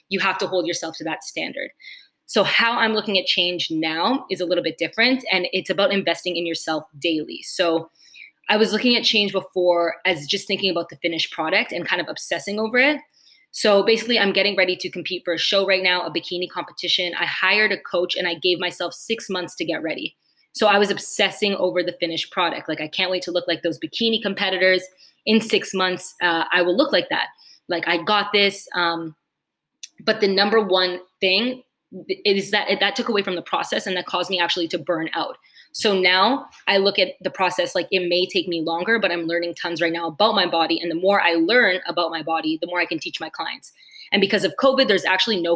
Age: 20-39